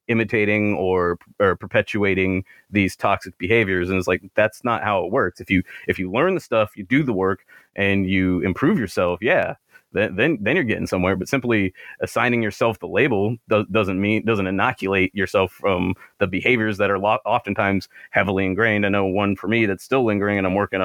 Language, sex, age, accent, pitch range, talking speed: English, male, 30-49, American, 95-110 Hz, 200 wpm